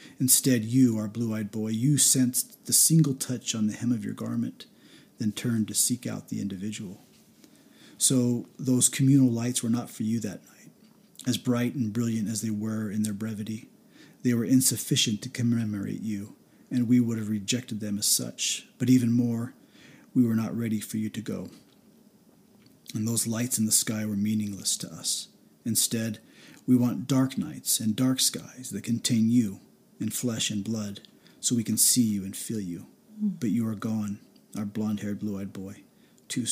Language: English